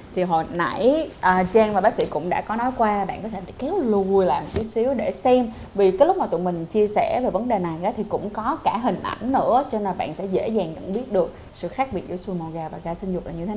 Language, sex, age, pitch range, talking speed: Vietnamese, female, 20-39, 190-260 Hz, 300 wpm